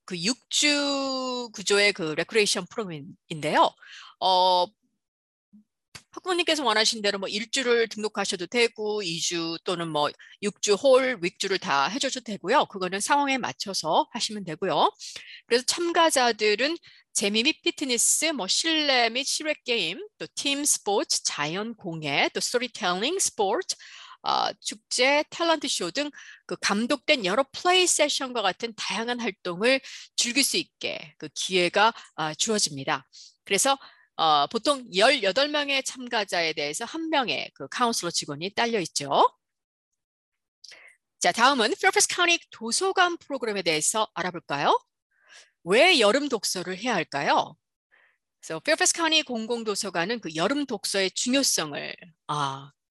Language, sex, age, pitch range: Korean, female, 40-59, 190-280 Hz